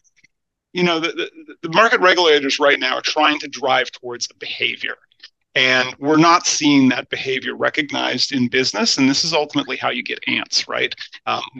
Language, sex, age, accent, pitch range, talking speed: English, male, 40-59, American, 130-170 Hz, 180 wpm